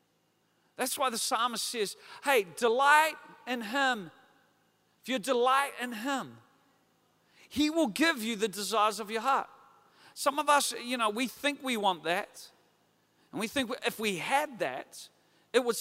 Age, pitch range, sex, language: 40-59, 220-280 Hz, male, English